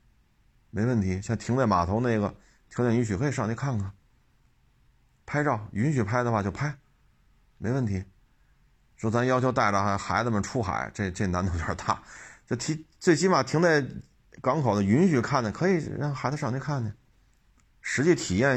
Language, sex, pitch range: Chinese, male, 100-125 Hz